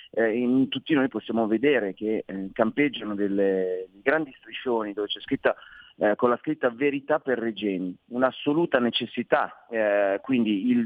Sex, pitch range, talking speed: male, 105-135 Hz, 140 wpm